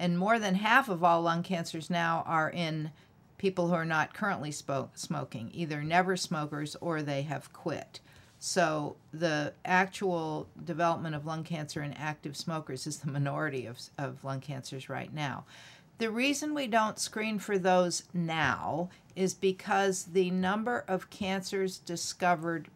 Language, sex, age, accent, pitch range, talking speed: English, female, 50-69, American, 160-195 Hz, 155 wpm